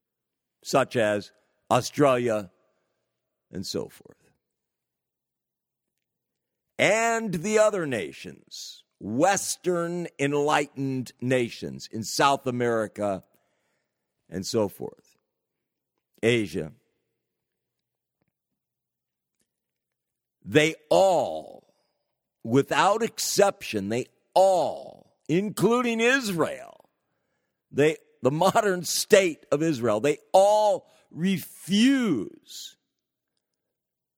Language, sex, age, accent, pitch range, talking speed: English, male, 50-69, American, 125-195 Hz, 65 wpm